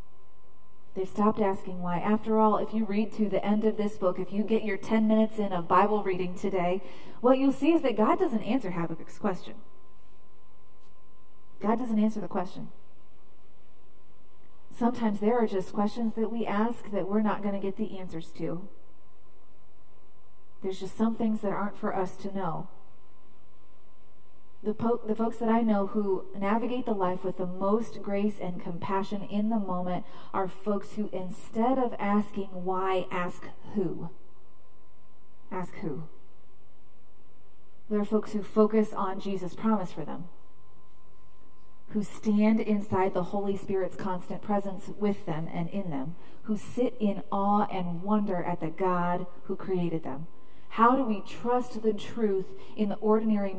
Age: 30-49